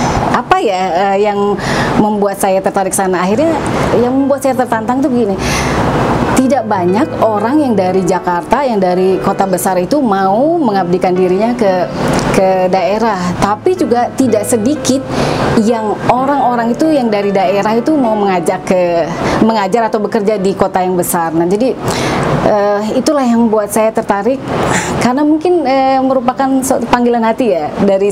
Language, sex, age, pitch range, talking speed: Indonesian, female, 30-49, 190-235 Hz, 145 wpm